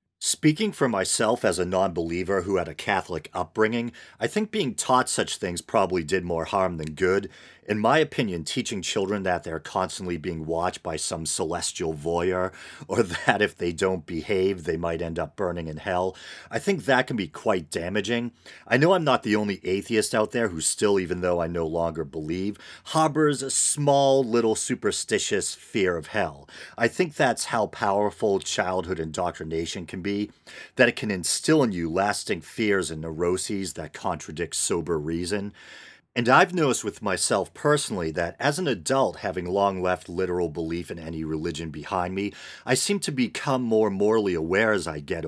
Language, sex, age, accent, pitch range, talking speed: English, male, 40-59, American, 85-110 Hz, 180 wpm